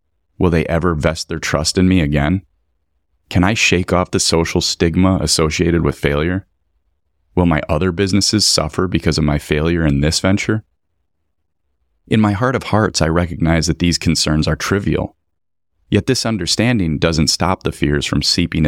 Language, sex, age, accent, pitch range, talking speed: English, male, 30-49, American, 75-95 Hz, 165 wpm